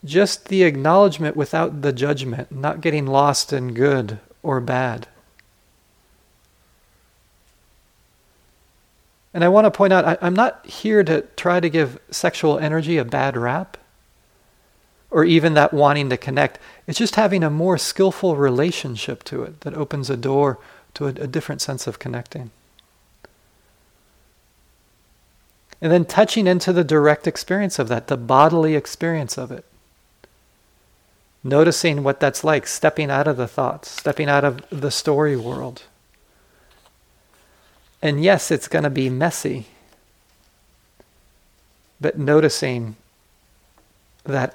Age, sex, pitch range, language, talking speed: 40-59, male, 130-165 Hz, English, 130 wpm